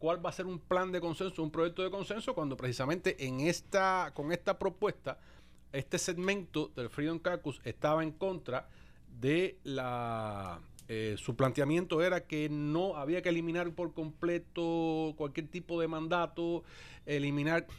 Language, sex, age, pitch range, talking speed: English, male, 40-59, 130-170 Hz, 150 wpm